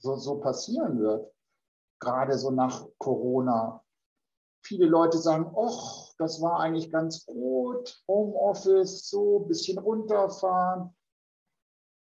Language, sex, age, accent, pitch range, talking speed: German, male, 60-79, German, 130-180 Hz, 105 wpm